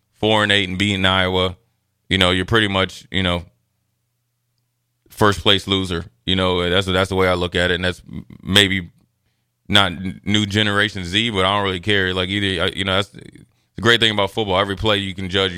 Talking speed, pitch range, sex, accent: 205 wpm, 95-105 Hz, male, American